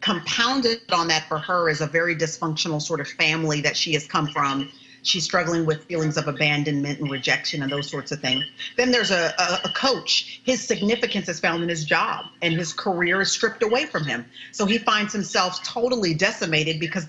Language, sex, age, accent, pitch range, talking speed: English, female, 40-59, American, 165-220 Hz, 200 wpm